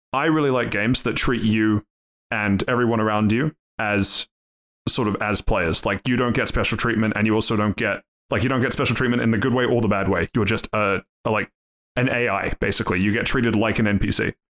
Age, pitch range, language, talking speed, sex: 20-39, 100-115 Hz, English, 225 wpm, male